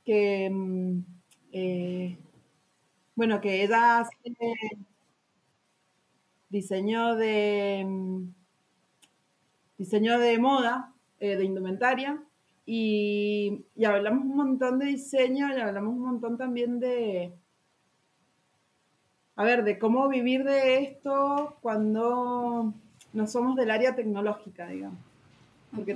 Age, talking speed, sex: 30-49, 100 wpm, female